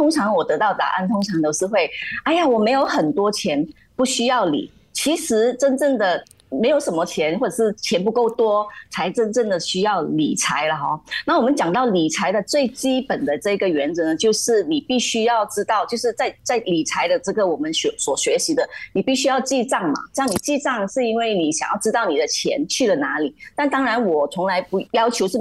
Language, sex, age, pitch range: Chinese, female, 30-49, 200-285 Hz